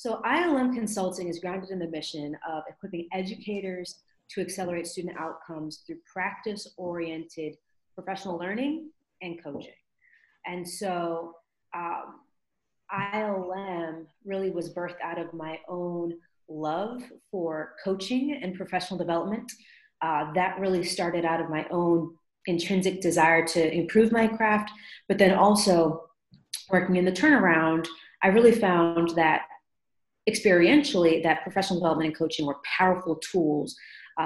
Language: English